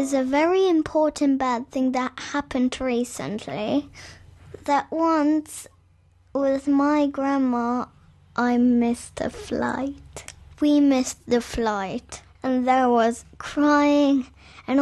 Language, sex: English, female